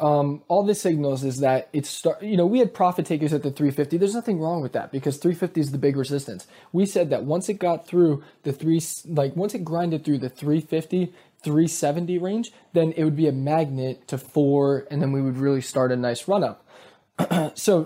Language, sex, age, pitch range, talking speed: English, male, 20-39, 140-190 Hz, 220 wpm